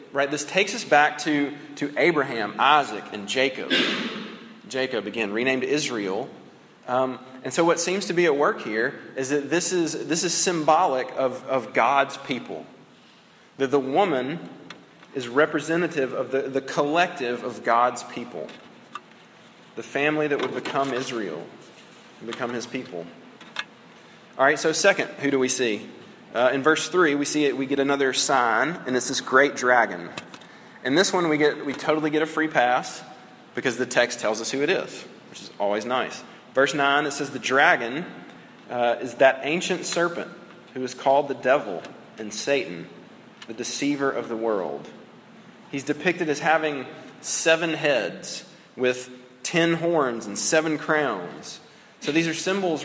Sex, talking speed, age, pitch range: male, 160 wpm, 30-49, 130-160 Hz